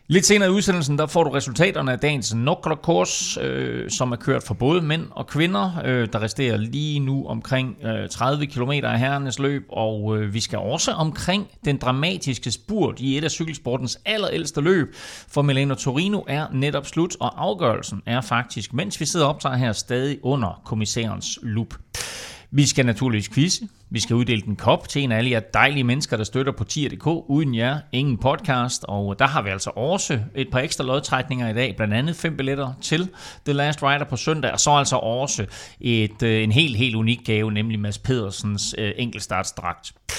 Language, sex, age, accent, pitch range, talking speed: Danish, male, 30-49, native, 115-155 Hz, 185 wpm